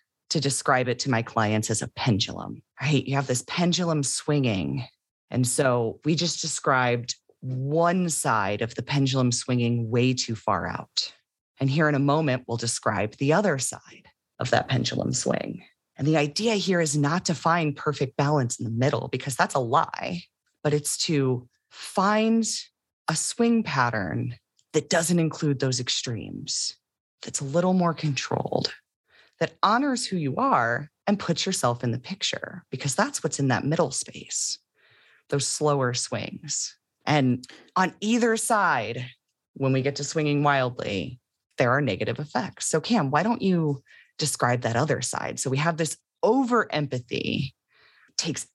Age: 30-49